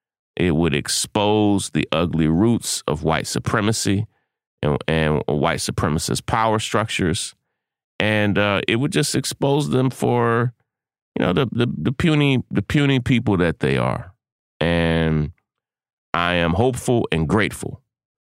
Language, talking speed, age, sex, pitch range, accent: English, 135 wpm, 30-49, male, 75-105 Hz, American